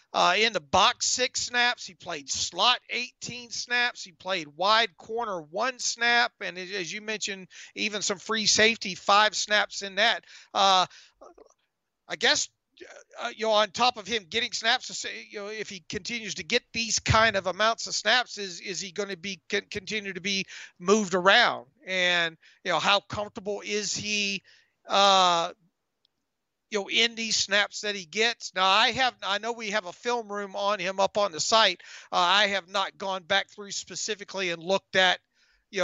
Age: 40-59